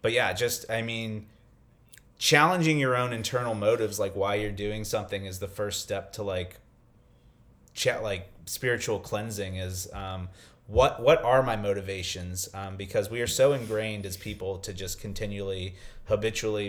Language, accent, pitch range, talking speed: English, American, 95-115 Hz, 155 wpm